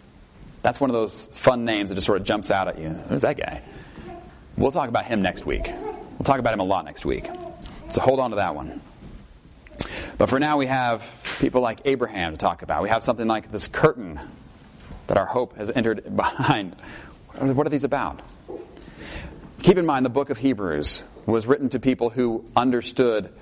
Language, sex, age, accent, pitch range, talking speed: English, male, 30-49, American, 115-155 Hz, 195 wpm